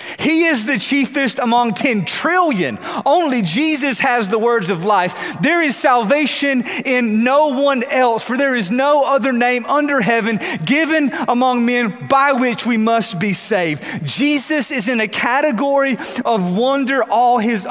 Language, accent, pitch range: English, American, 175-250 Hz